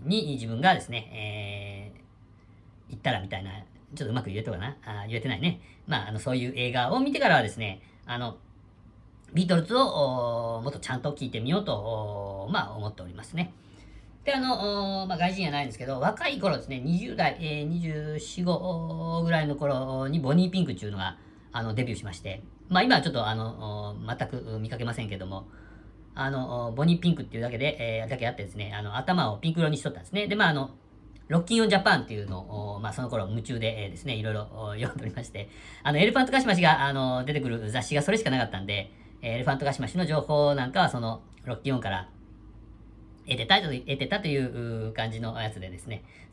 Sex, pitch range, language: female, 105-150 Hz, Japanese